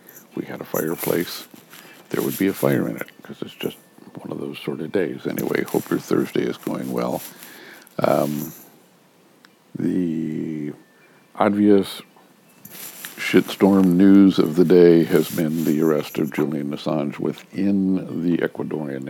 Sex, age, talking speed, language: male, 60-79, 140 wpm, English